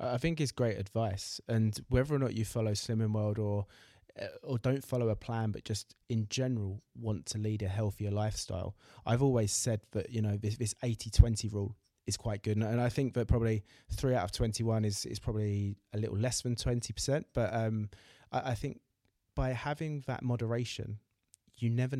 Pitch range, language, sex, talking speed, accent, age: 105-120 Hz, English, male, 190 wpm, British, 20-39